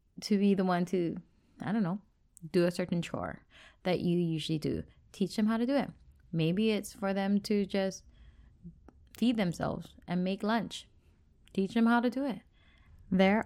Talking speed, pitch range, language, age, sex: 180 wpm, 145-200 Hz, English, 20-39, female